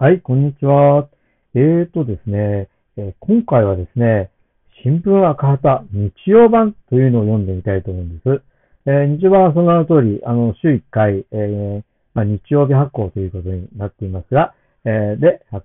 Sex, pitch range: male, 100-145 Hz